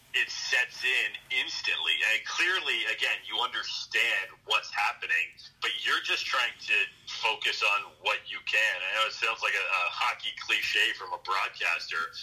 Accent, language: American, English